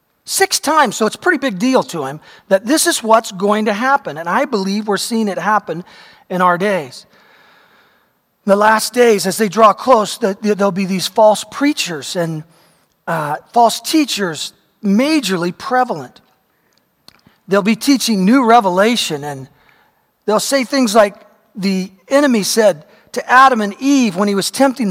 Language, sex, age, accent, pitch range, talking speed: English, male, 40-59, American, 195-245 Hz, 160 wpm